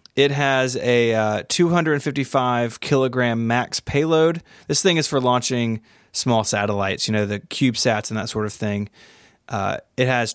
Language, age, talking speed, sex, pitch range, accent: English, 20-39, 150 wpm, male, 115-140 Hz, American